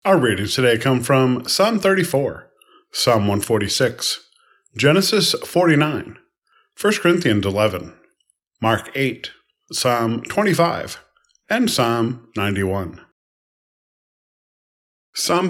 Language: English